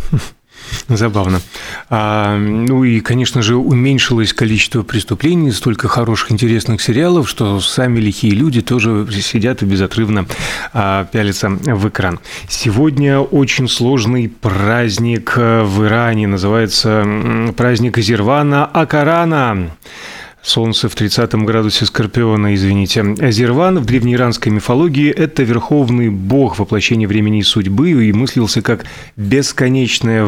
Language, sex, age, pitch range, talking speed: Russian, male, 30-49, 105-130 Hz, 110 wpm